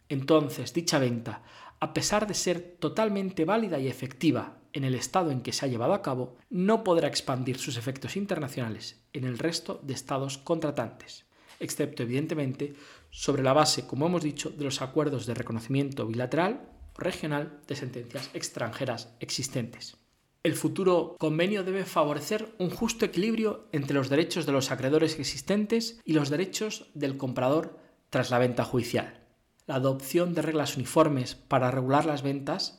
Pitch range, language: 130-165 Hz, Spanish